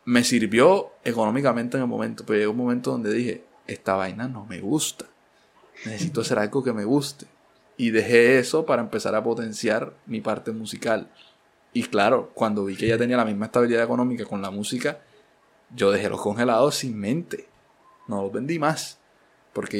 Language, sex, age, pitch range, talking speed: Spanish, male, 20-39, 110-130 Hz, 175 wpm